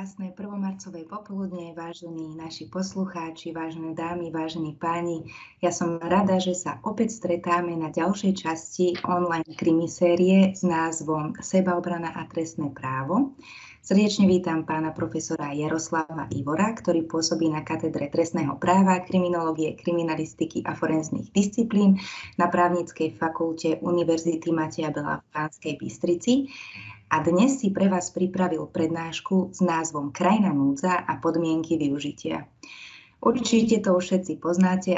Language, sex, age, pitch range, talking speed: Slovak, female, 20-39, 160-185 Hz, 125 wpm